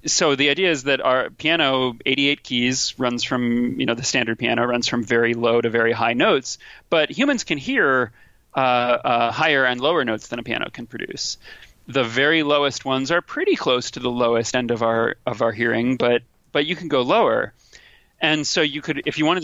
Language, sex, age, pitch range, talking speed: English, male, 30-49, 120-145 Hz, 210 wpm